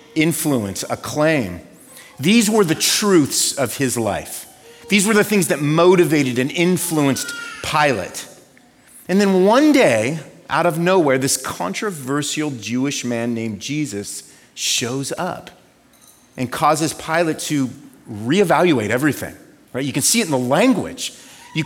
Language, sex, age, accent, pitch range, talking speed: English, male, 30-49, American, 135-185 Hz, 135 wpm